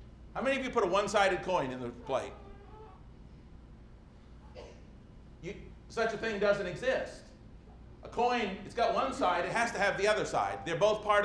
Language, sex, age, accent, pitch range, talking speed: English, male, 50-69, American, 180-235 Hz, 170 wpm